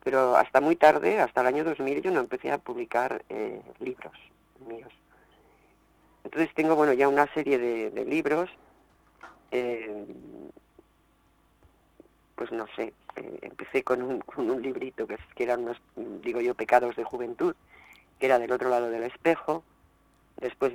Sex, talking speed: female, 155 wpm